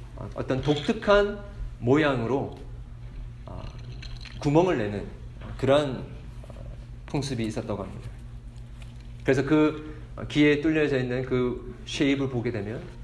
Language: Korean